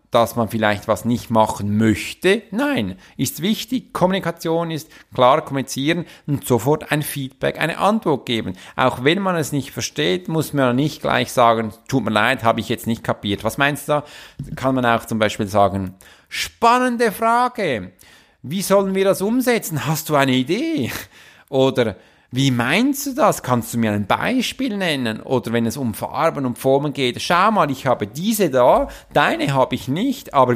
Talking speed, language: 180 wpm, German